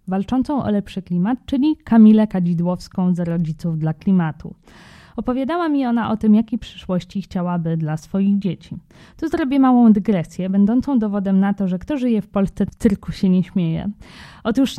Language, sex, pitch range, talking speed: Polish, female, 180-245 Hz, 165 wpm